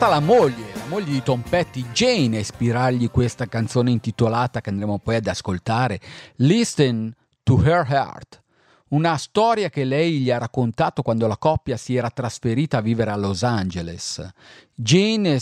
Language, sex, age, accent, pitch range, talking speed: Italian, male, 40-59, native, 115-155 Hz, 160 wpm